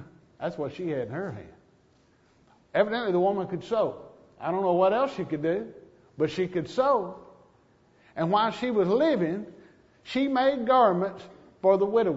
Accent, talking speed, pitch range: American, 175 wpm, 175-260 Hz